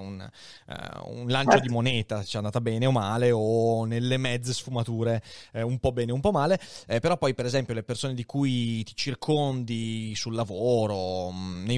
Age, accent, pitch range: 20-39, native, 115-145 Hz